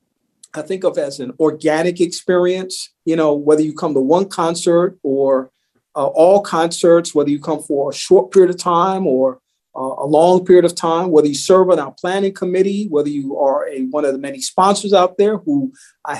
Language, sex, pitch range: English, male, 150-195 Hz